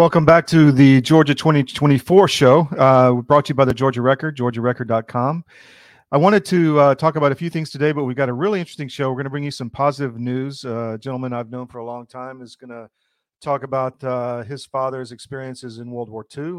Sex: male